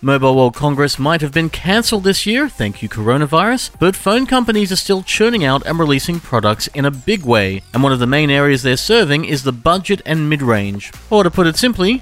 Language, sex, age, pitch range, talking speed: English, male, 40-59, 120-195 Hz, 220 wpm